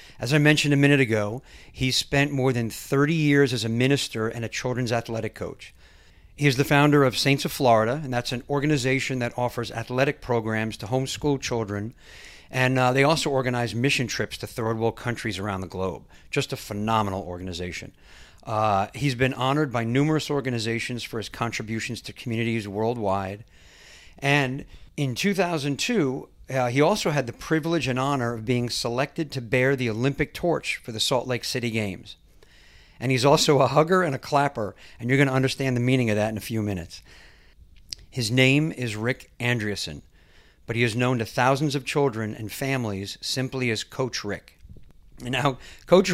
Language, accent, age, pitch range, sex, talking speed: English, American, 50-69, 110-140 Hz, male, 180 wpm